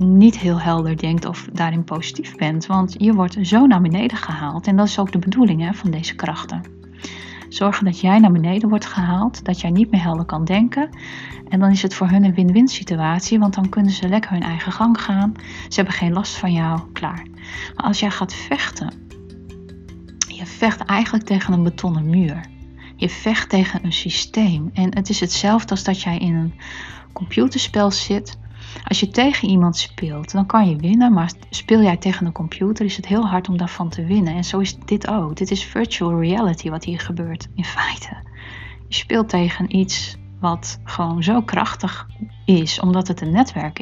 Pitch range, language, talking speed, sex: 160-200 Hz, Dutch, 195 wpm, female